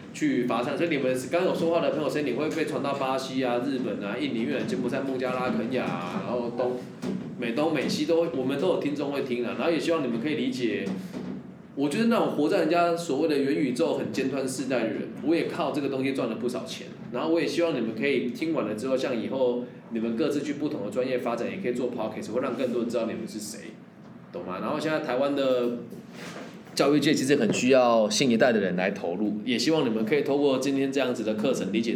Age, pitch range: 20-39, 125-170 Hz